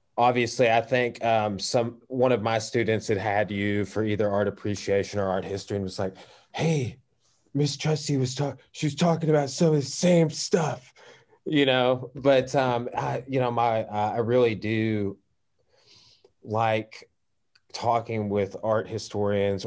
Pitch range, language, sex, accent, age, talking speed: 100-125 Hz, English, male, American, 30-49, 160 wpm